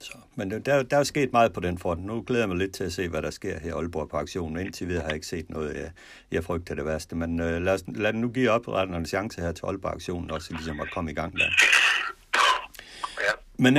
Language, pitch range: Danish, 80-100 Hz